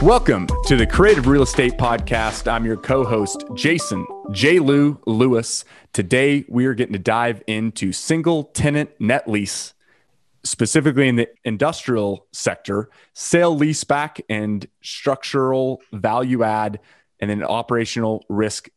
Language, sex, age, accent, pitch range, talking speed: English, male, 30-49, American, 105-135 Hz, 130 wpm